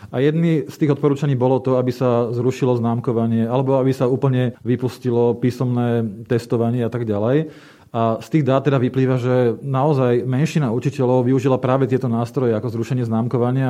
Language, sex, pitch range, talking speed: Slovak, male, 120-135 Hz, 165 wpm